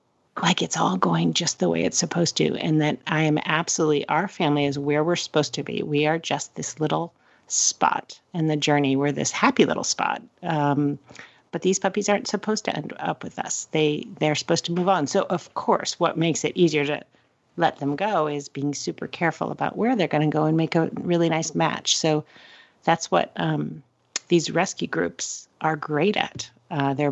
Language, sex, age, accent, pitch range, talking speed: English, female, 40-59, American, 150-190 Hz, 205 wpm